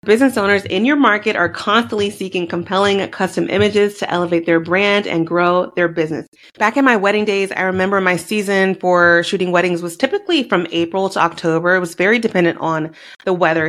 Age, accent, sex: 30-49, American, female